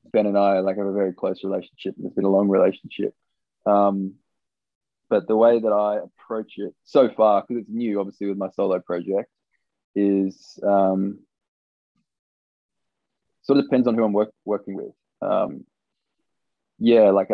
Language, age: English, 20-39